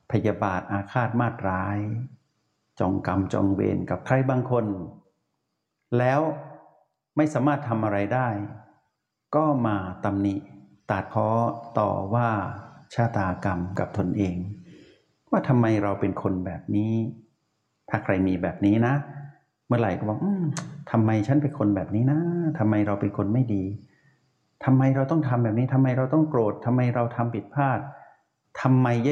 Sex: male